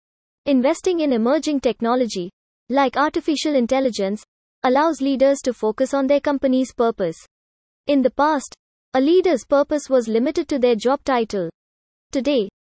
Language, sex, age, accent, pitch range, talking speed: English, female, 20-39, Indian, 240-290 Hz, 135 wpm